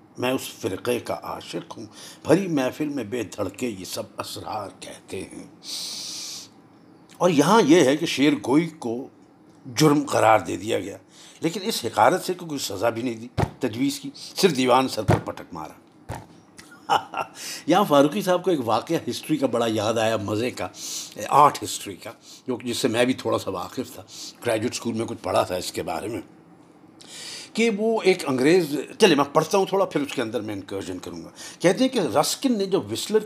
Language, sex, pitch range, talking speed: Urdu, male, 120-185 Hz, 190 wpm